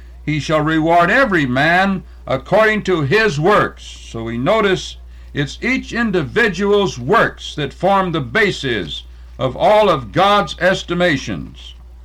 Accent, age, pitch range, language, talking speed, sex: American, 60-79, 130-195 Hz, English, 125 wpm, male